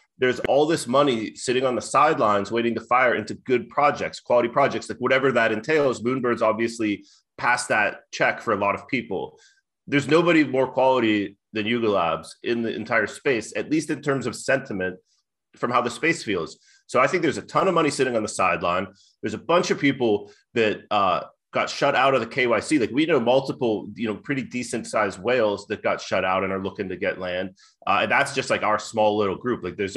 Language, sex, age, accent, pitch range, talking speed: English, male, 30-49, American, 100-135 Hz, 215 wpm